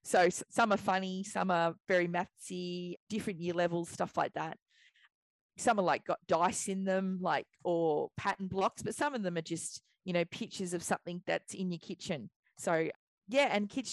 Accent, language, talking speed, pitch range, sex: Australian, English, 190 wpm, 175-210 Hz, female